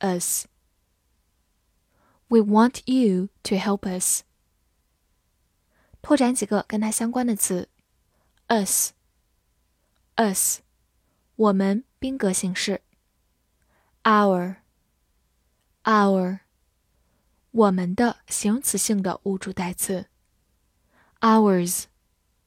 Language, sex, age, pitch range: Chinese, female, 10-29, 185-235 Hz